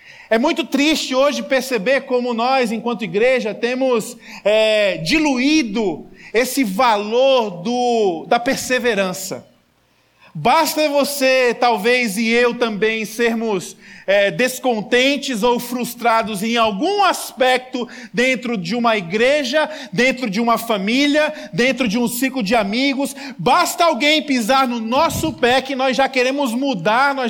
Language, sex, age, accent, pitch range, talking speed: Portuguese, male, 40-59, Brazilian, 230-270 Hz, 120 wpm